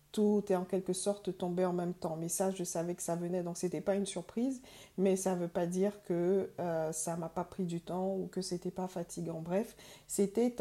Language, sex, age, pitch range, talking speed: English, female, 50-69, 175-195 Hz, 245 wpm